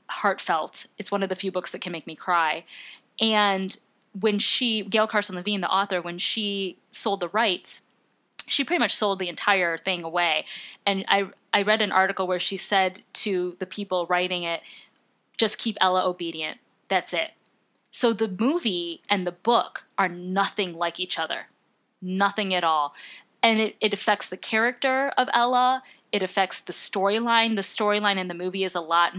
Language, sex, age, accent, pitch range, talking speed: English, female, 10-29, American, 180-215 Hz, 180 wpm